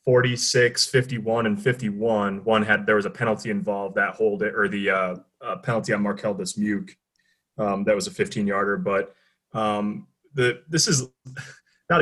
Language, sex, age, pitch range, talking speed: English, male, 30-49, 105-130 Hz, 175 wpm